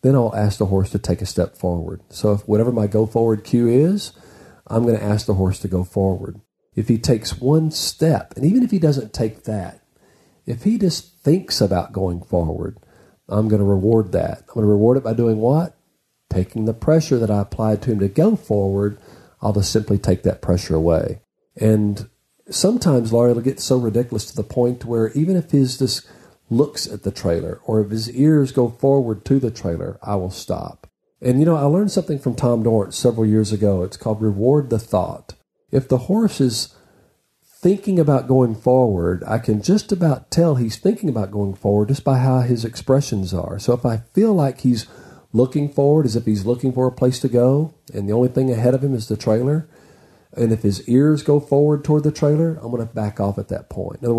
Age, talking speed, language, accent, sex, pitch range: 40-59, 215 wpm, English, American, male, 105-135 Hz